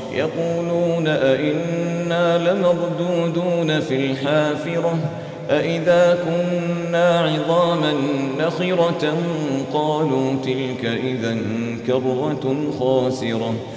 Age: 40-59